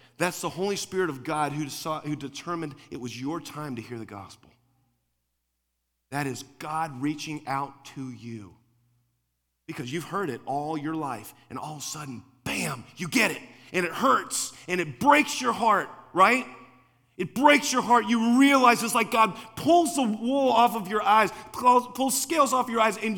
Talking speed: 185 wpm